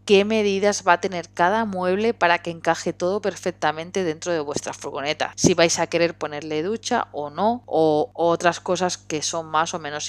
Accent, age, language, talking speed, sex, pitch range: Spanish, 20-39, Spanish, 190 wpm, female, 155-175 Hz